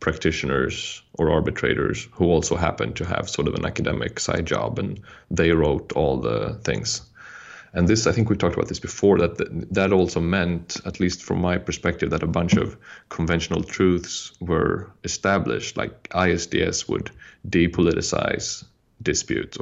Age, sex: 30-49, male